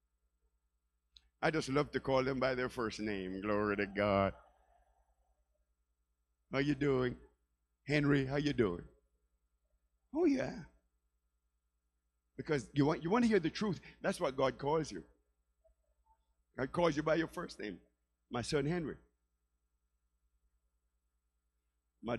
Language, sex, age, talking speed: English, male, 50-69, 125 wpm